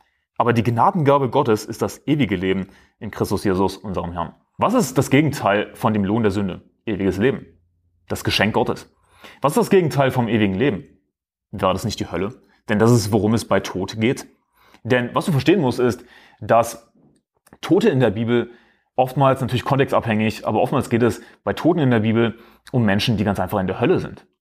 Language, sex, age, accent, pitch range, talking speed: German, male, 30-49, German, 110-140 Hz, 195 wpm